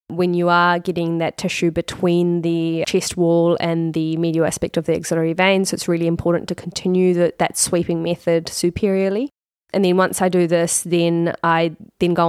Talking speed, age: 190 wpm, 20-39